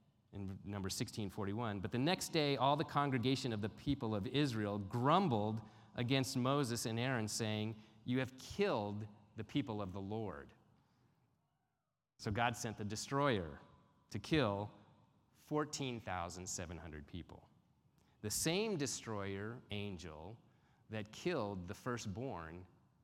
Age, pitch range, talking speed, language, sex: 30-49, 100-135 Hz, 120 wpm, English, male